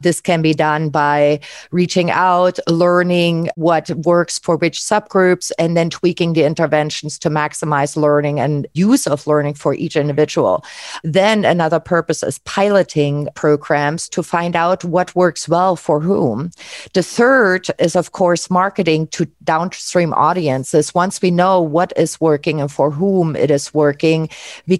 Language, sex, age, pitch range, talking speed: English, female, 40-59, 155-180 Hz, 155 wpm